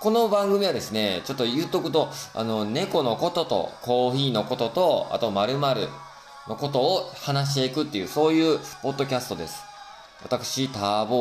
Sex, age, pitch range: male, 20-39, 105-150 Hz